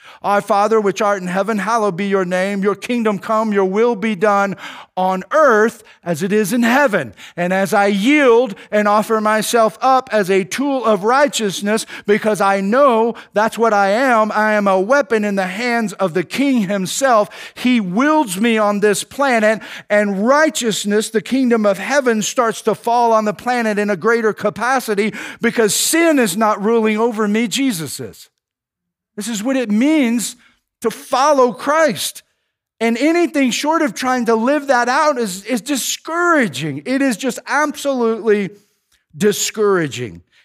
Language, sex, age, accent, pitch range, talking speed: English, male, 50-69, American, 205-255 Hz, 165 wpm